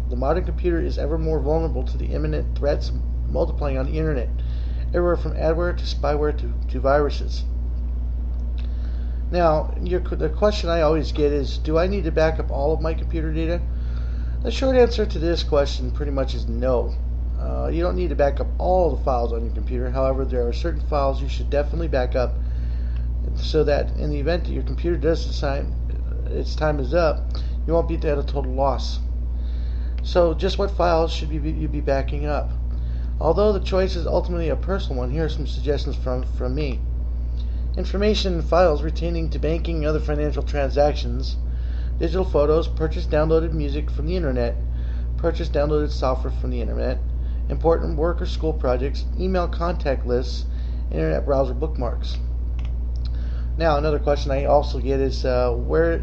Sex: male